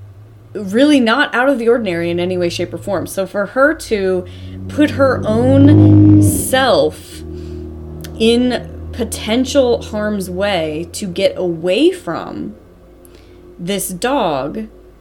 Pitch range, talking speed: 165-210 Hz, 120 wpm